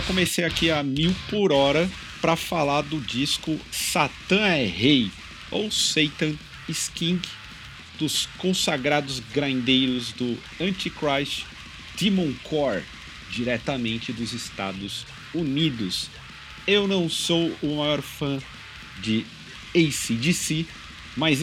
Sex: male